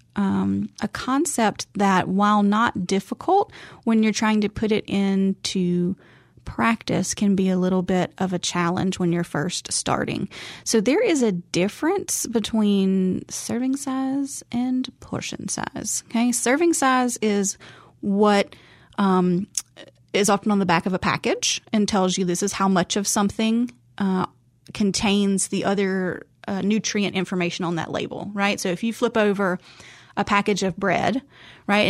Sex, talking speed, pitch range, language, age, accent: female, 150 wpm, 180-215 Hz, English, 30-49, American